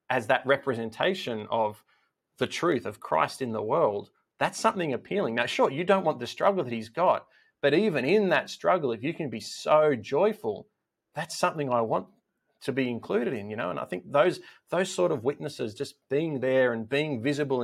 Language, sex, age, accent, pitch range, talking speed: English, male, 30-49, Australian, 115-145 Hz, 200 wpm